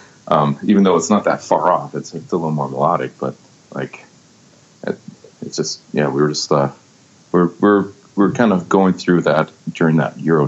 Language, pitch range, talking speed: English, 70-80 Hz, 200 wpm